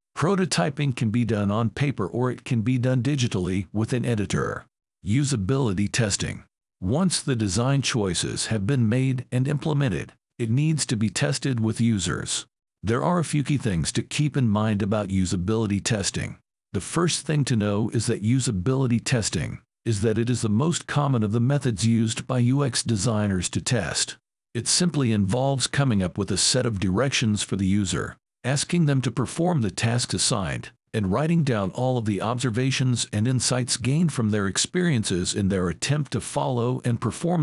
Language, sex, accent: English, male, American